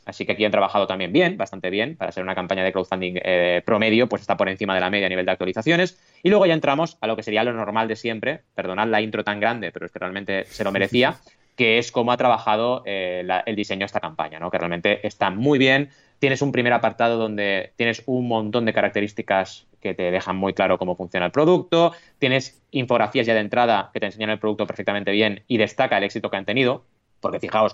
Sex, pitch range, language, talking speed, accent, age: male, 100-125 Hz, Spanish, 240 wpm, Spanish, 20-39